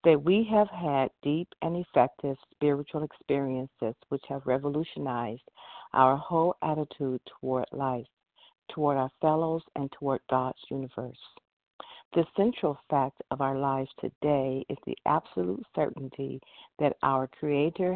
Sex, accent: female, American